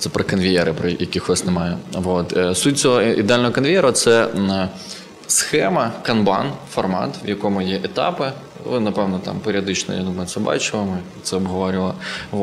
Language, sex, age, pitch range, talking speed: Ukrainian, male, 20-39, 95-115 Hz, 140 wpm